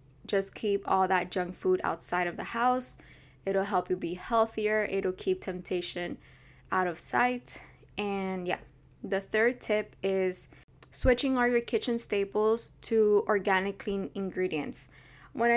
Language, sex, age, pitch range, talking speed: English, female, 10-29, 185-215 Hz, 145 wpm